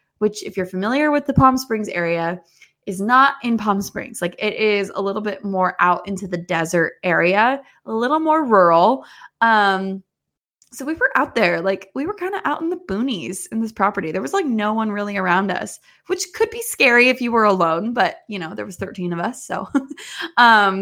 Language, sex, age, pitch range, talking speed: English, female, 20-39, 185-245 Hz, 215 wpm